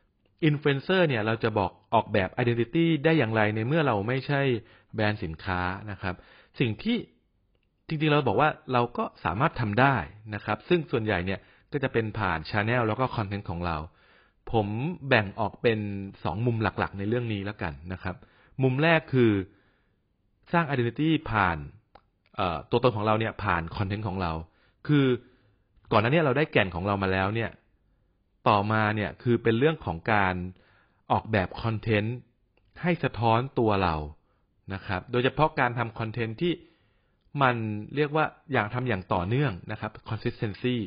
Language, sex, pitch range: Thai, male, 100-130 Hz